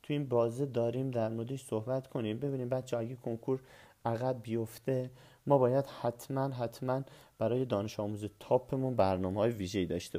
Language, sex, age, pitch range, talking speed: Persian, male, 40-59, 115-155 Hz, 155 wpm